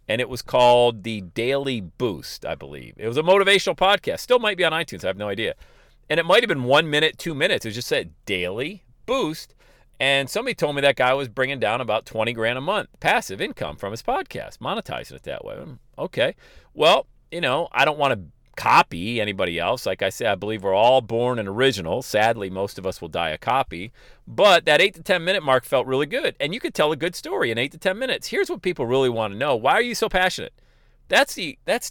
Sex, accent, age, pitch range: male, American, 40-59, 115-155 Hz